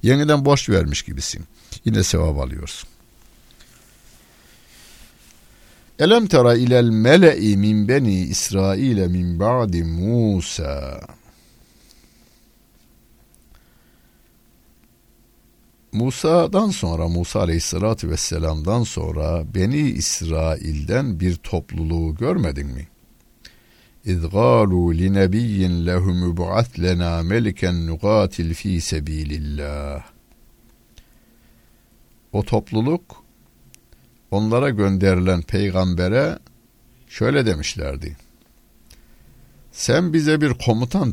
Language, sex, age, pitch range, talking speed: Turkish, male, 60-79, 85-115 Hz, 70 wpm